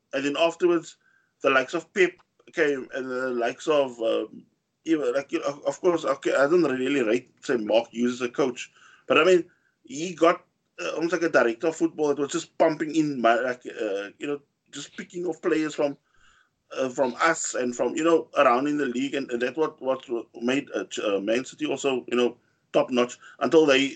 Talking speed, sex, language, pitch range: 210 wpm, male, English, 130-170 Hz